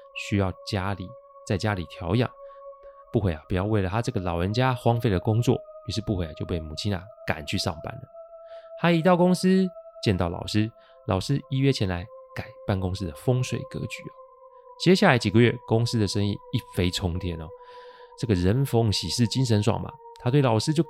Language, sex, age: Chinese, male, 20-39